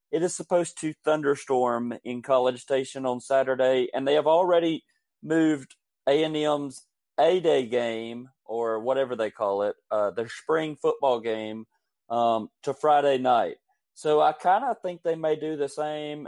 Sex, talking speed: male, 155 wpm